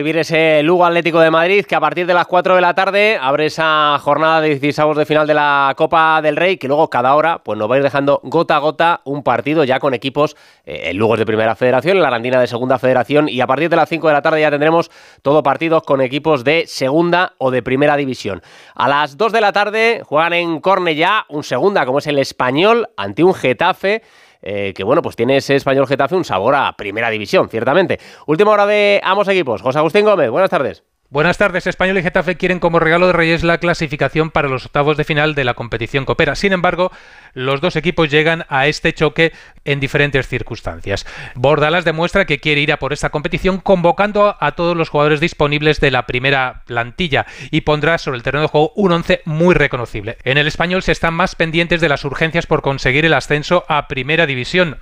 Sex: male